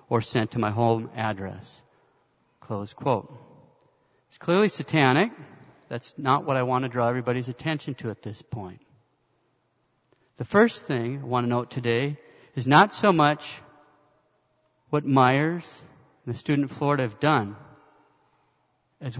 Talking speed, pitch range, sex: 145 wpm, 125-150 Hz, male